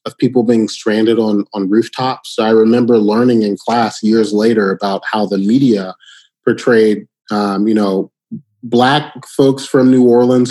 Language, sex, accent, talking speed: English, male, American, 160 wpm